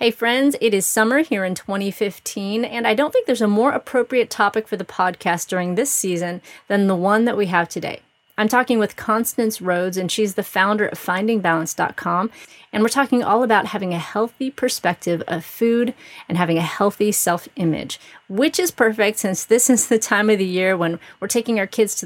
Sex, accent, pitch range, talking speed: female, American, 180-225 Hz, 200 wpm